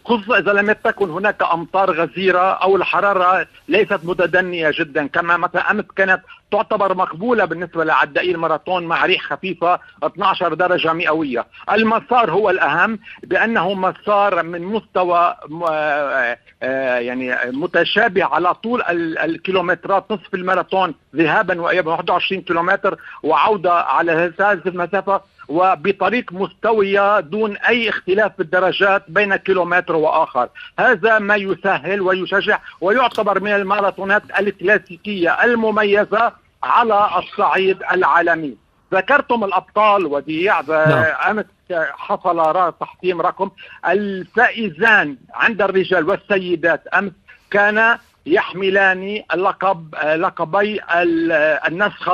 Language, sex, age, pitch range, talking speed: Arabic, male, 50-69, 170-205 Hz, 100 wpm